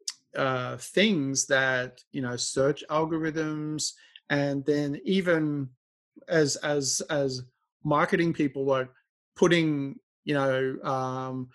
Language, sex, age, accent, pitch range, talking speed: English, male, 30-49, Australian, 130-155 Hz, 105 wpm